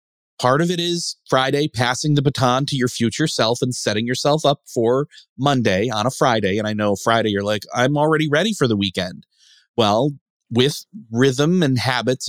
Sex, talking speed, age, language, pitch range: male, 185 wpm, 30-49, English, 115-160 Hz